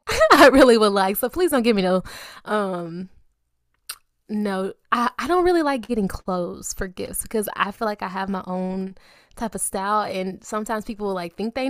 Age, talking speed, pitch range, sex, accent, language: 20-39, 200 wpm, 185-260 Hz, female, American, English